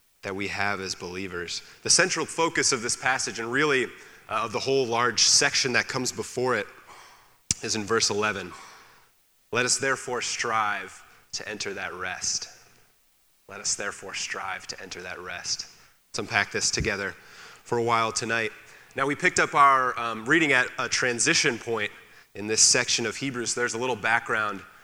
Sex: male